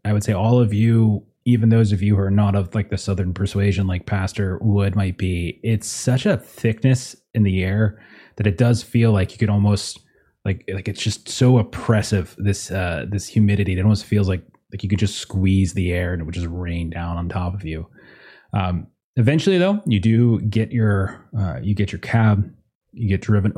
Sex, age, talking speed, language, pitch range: male, 20-39, 215 wpm, English, 100-115 Hz